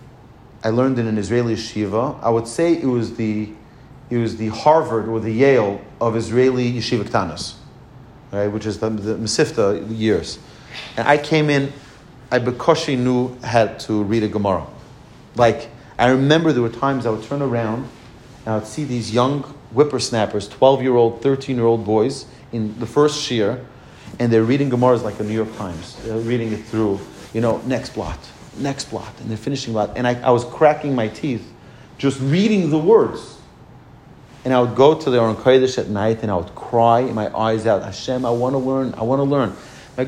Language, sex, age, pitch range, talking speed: English, male, 40-59, 110-130 Hz, 200 wpm